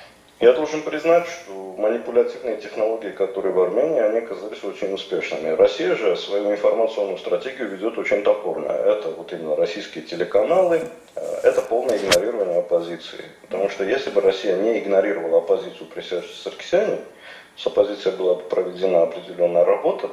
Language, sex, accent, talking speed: Russian, male, native, 140 wpm